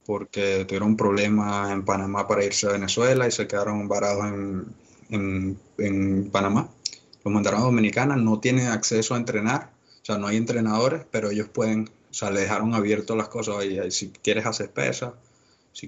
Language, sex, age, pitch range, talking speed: Spanish, male, 20-39, 100-120 Hz, 180 wpm